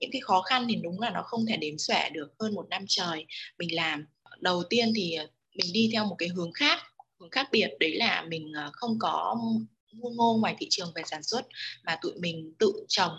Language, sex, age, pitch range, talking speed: Vietnamese, female, 20-39, 170-230 Hz, 225 wpm